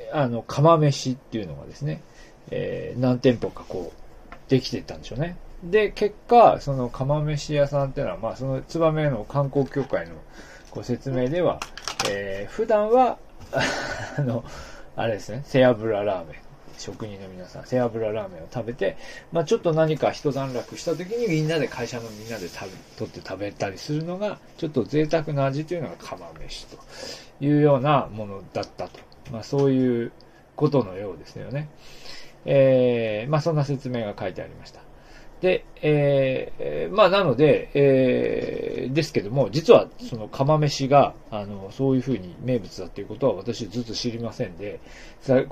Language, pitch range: Japanese, 115-155 Hz